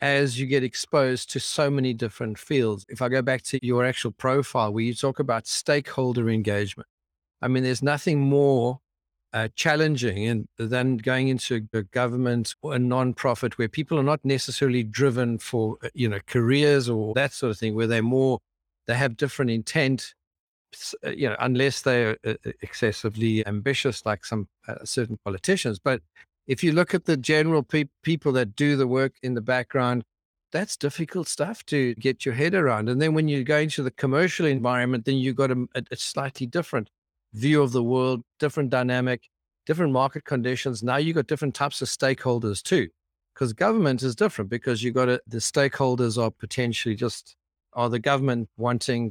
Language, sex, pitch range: English, male, 115-140 Hz